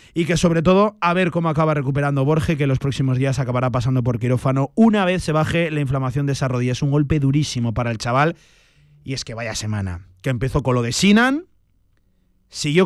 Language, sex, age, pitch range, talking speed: Spanish, male, 30-49, 120-165 Hz, 220 wpm